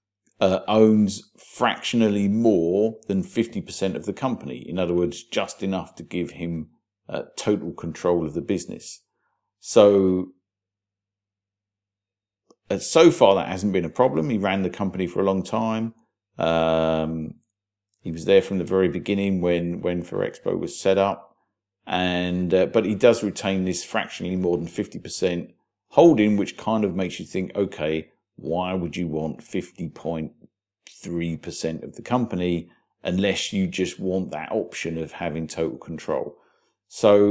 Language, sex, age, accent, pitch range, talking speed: English, male, 50-69, British, 85-105 Hz, 155 wpm